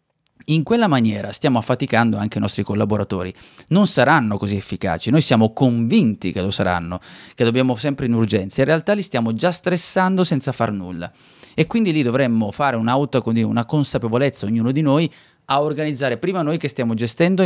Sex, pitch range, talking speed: male, 110-140 Hz, 175 wpm